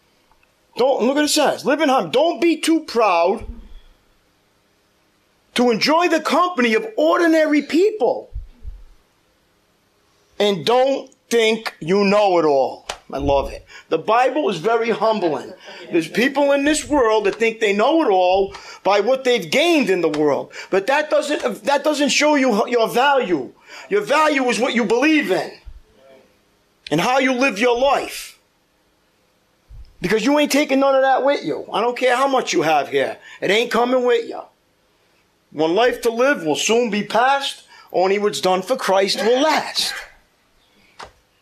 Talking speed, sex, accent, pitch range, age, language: 160 wpm, male, American, 195-275 Hz, 50-69, English